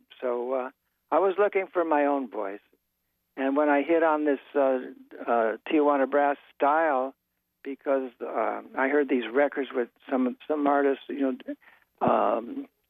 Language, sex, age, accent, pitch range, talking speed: English, male, 60-79, American, 130-160 Hz, 155 wpm